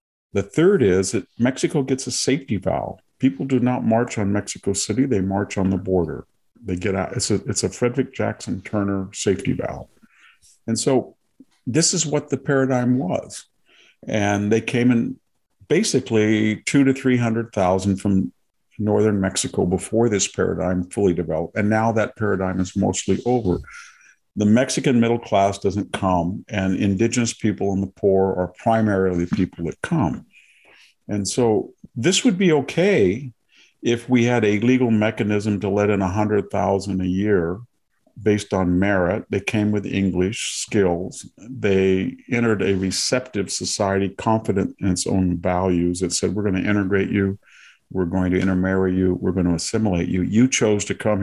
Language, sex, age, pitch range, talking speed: English, male, 50-69, 95-115 Hz, 165 wpm